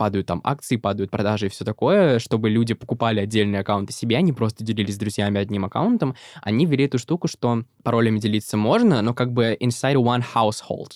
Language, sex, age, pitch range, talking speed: Russian, male, 20-39, 105-120 Hz, 190 wpm